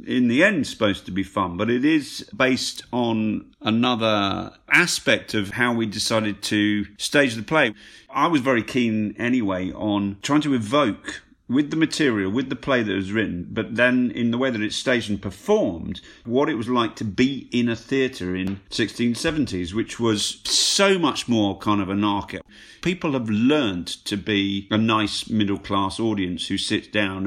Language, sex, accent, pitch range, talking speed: English, male, British, 100-130 Hz, 180 wpm